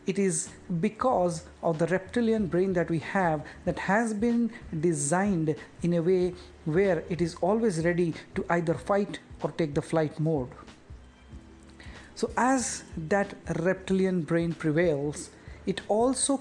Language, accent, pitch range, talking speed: English, Indian, 160-195 Hz, 140 wpm